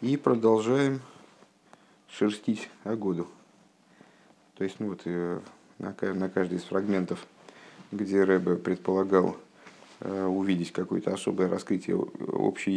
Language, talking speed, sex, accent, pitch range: Russian, 95 wpm, male, native, 95-115 Hz